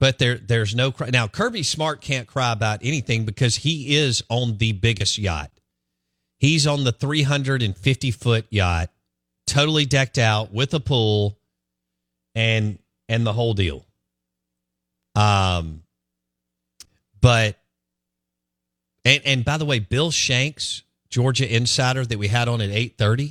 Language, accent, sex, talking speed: English, American, male, 130 wpm